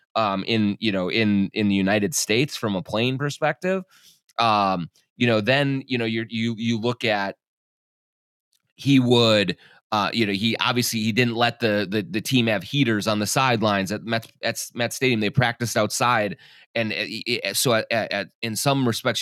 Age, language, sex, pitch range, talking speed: 30-49, English, male, 100-120 Hz, 185 wpm